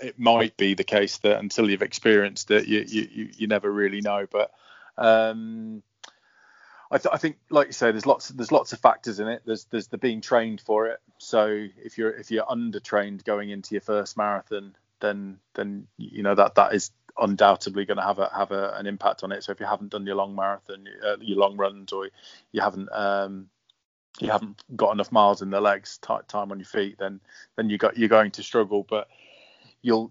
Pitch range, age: 100-110 Hz, 20-39